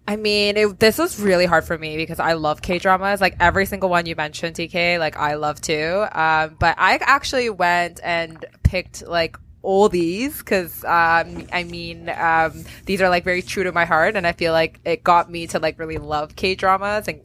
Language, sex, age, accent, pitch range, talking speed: English, female, 20-39, American, 170-215 Hz, 210 wpm